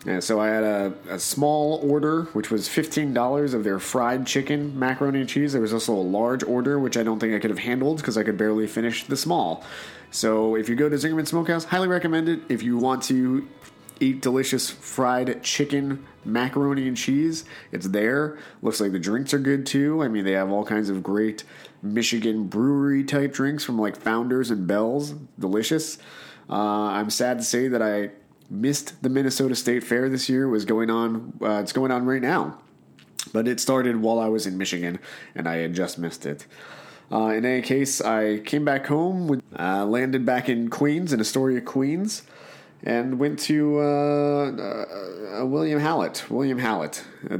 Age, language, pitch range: 30-49, English, 110-140 Hz